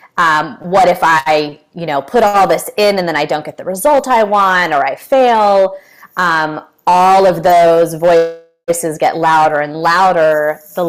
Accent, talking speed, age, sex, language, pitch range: American, 175 wpm, 20-39, female, English, 155-190 Hz